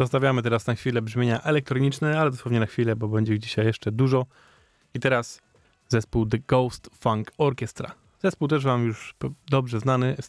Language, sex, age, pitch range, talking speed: Polish, male, 20-39, 110-130 Hz, 175 wpm